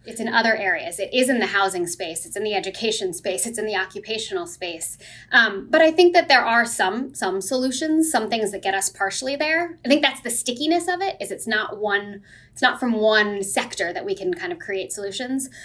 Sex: female